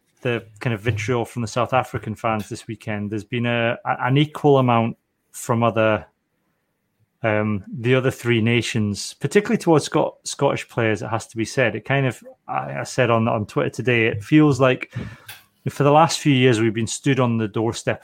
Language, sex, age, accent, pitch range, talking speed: English, male, 30-49, British, 110-135 Hz, 190 wpm